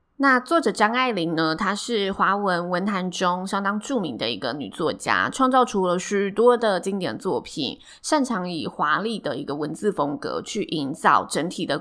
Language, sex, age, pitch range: Chinese, female, 20-39, 180-245 Hz